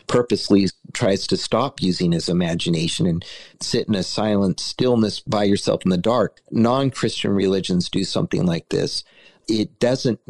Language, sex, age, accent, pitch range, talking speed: English, male, 50-69, American, 105-145 Hz, 150 wpm